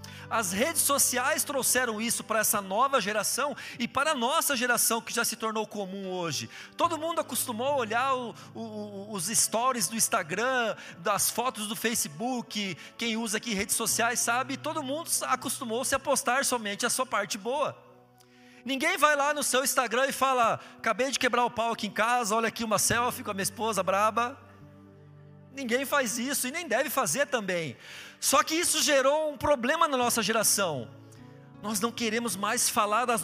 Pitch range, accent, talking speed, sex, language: 215-270 Hz, Brazilian, 175 wpm, male, Portuguese